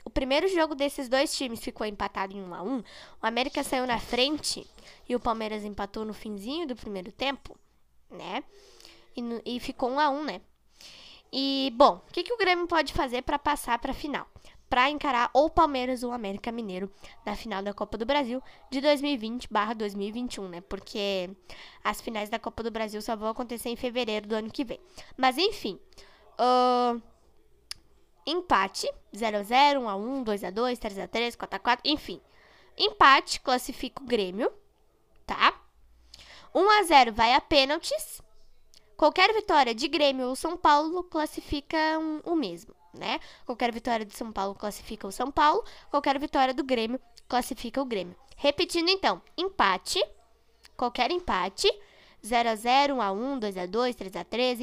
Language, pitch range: Portuguese, 220-290 Hz